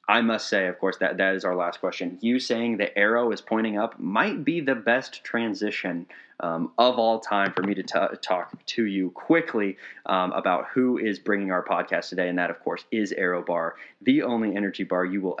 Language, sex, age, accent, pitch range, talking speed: English, male, 20-39, American, 90-105 Hz, 220 wpm